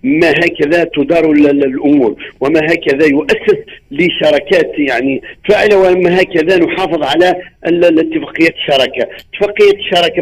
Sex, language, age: male, Arabic, 50-69